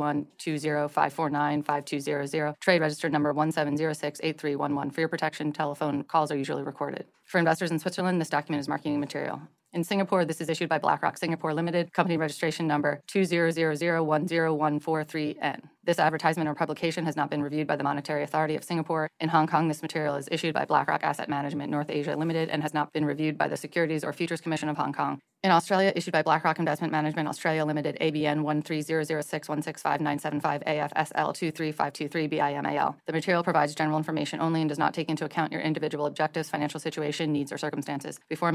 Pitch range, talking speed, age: 150-165 Hz, 175 wpm, 30-49